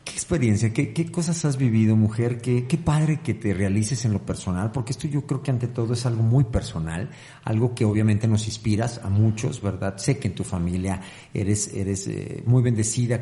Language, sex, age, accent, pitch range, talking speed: Spanish, male, 50-69, Mexican, 110-135 Hz, 210 wpm